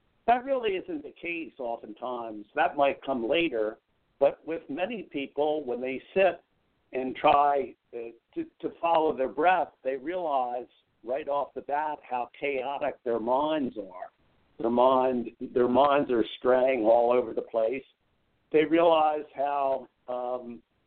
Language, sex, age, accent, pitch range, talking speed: English, male, 60-79, American, 125-200 Hz, 140 wpm